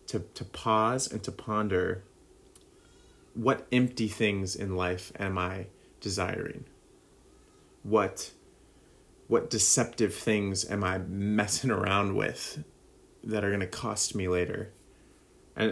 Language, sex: English, male